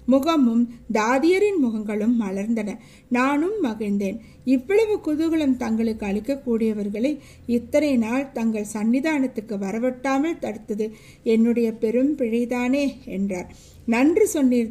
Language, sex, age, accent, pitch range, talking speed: Tamil, female, 60-79, native, 220-275 Hz, 85 wpm